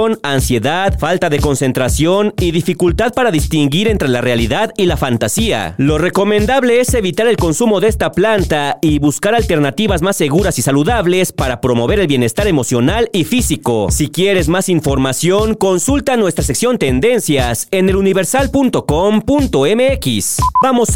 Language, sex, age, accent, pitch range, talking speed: Spanish, male, 40-59, Mexican, 140-215 Hz, 140 wpm